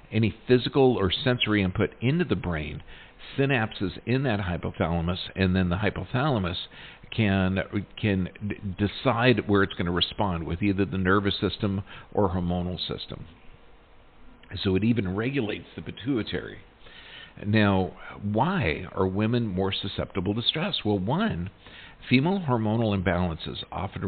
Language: English